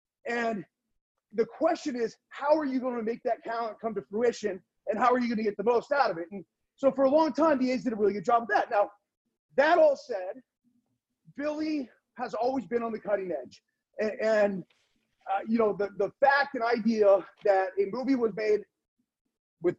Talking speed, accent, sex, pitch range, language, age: 205 wpm, American, male, 210-275 Hz, English, 30-49